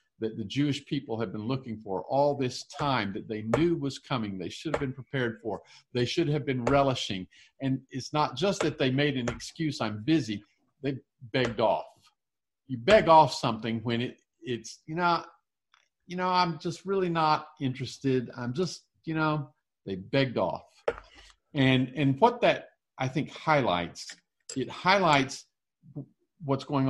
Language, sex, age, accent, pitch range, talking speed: English, male, 50-69, American, 110-155 Hz, 165 wpm